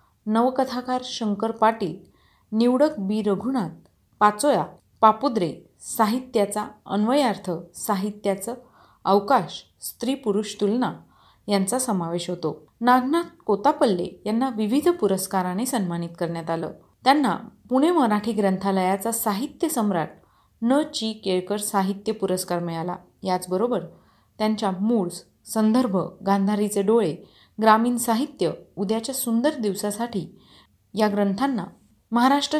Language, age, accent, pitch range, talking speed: Marathi, 30-49, native, 195-245 Hz, 95 wpm